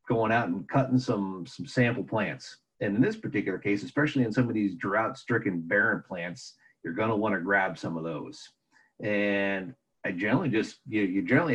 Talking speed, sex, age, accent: 190 wpm, male, 50-69, American